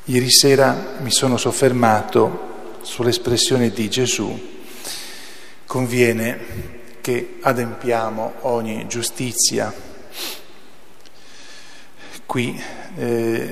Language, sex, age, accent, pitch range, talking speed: Italian, male, 40-59, native, 110-125 Hz, 65 wpm